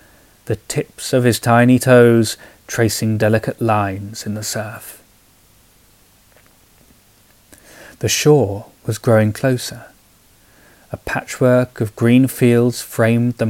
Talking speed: 105 wpm